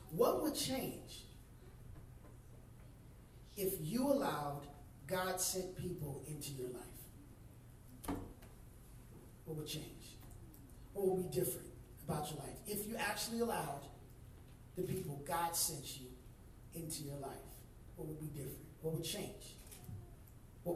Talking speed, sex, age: 120 wpm, male, 30-49